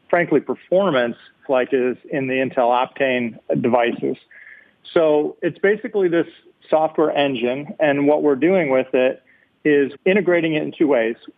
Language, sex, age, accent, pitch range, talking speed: English, male, 40-59, American, 130-155 Hz, 140 wpm